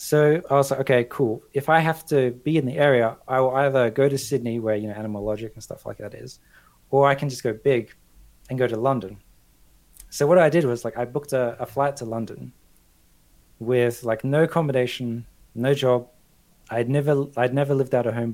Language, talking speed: English, 220 wpm